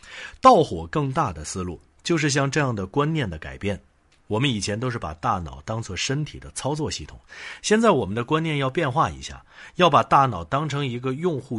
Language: Chinese